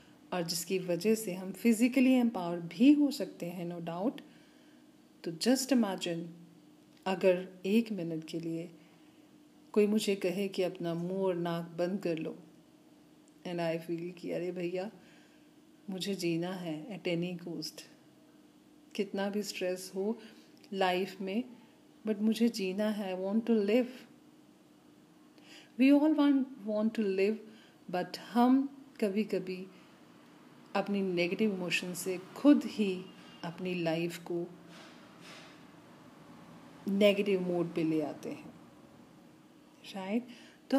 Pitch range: 175-235 Hz